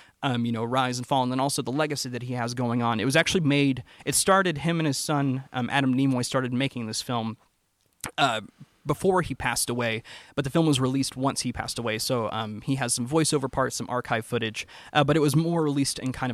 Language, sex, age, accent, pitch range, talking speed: English, male, 20-39, American, 115-145 Hz, 240 wpm